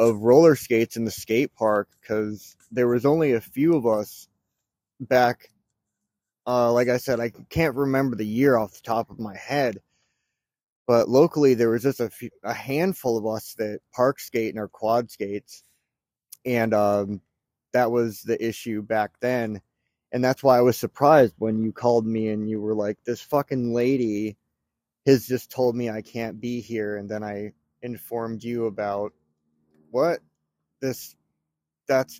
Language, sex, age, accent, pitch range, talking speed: English, male, 30-49, American, 105-125 Hz, 170 wpm